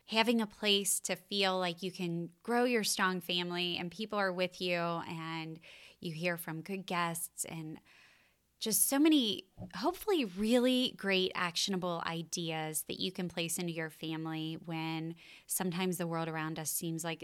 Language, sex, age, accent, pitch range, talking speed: English, female, 20-39, American, 165-195 Hz, 165 wpm